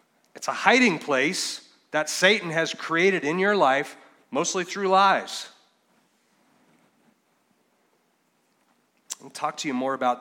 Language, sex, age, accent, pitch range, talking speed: English, male, 30-49, American, 130-165 Hz, 125 wpm